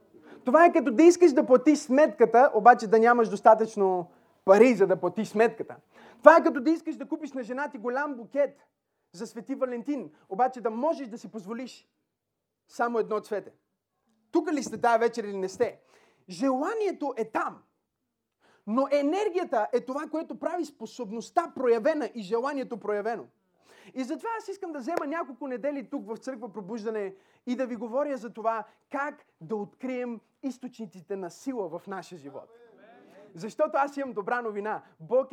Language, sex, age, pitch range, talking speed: Bulgarian, male, 30-49, 220-275 Hz, 165 wpm